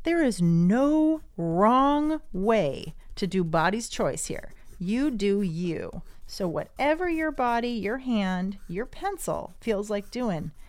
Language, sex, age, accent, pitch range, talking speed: English, female, 30-49, American, 190-315 Hz, 135 wpm